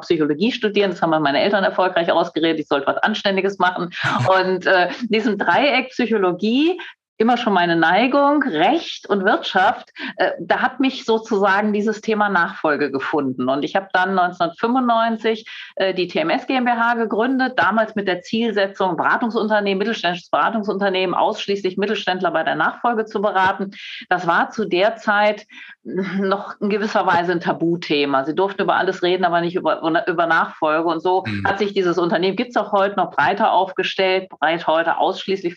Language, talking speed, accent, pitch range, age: German, 160 wpm, German, 180-220 Hz, 40-59